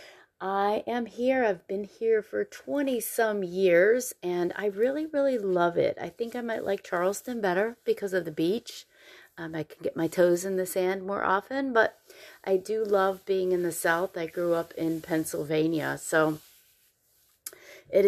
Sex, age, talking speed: female, 30-49, 175 wpm